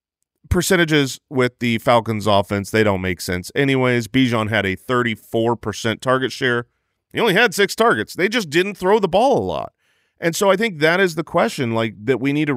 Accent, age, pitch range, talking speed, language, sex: American, 40-59, 115-170 Hz, 200 wpm, English, male